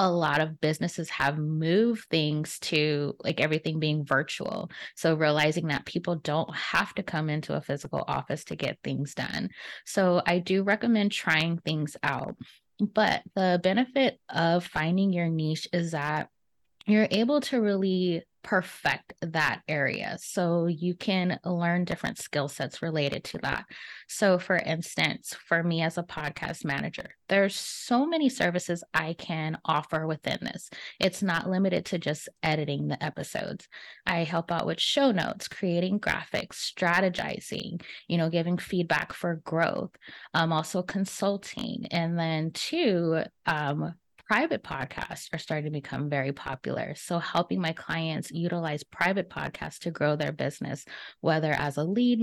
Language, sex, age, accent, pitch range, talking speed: English, female, 20-39, American, 155-190 Hz, 150 wpm